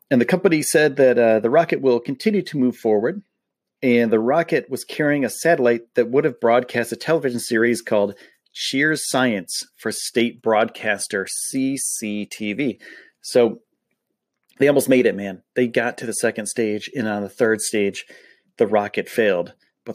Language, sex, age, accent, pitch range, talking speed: English, male, 30-49, American, 110-140 Hz, 165 wpm